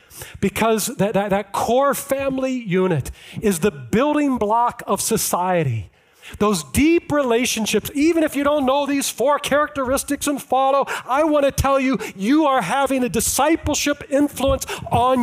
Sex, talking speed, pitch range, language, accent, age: male, 150 wpm, 130-210 Hz, English, American, 40-59